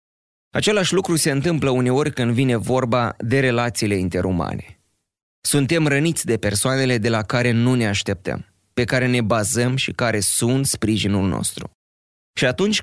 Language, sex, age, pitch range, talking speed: Romanian, male, 20-39, 105-140 Hz, 150 wpm